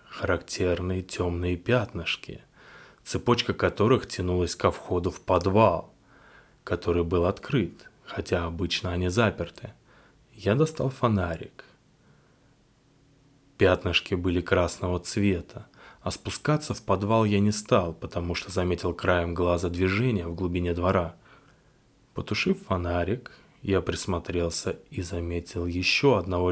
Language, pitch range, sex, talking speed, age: Russian, 90-115 Hz, male, 110 wpm, 20-39